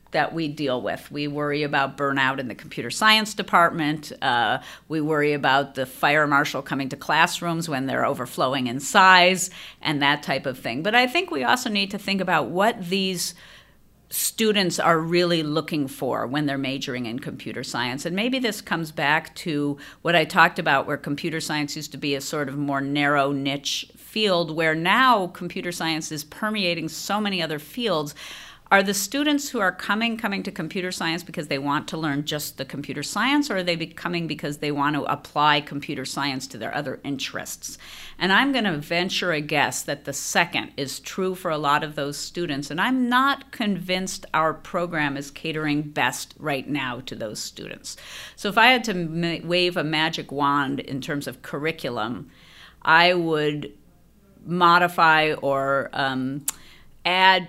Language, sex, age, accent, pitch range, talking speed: English, female, 50-69, American, 145-180 Hz, 180 wpm